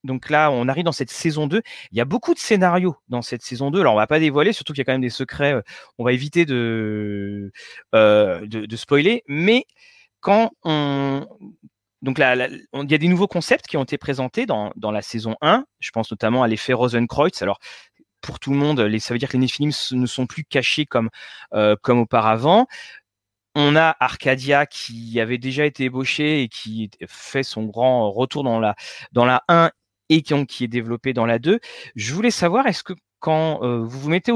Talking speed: 215 wpm